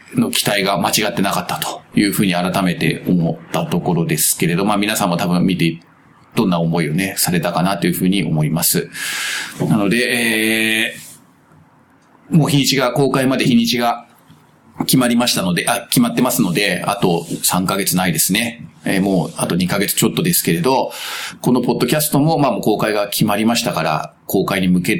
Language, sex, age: Japanese, male, 40-59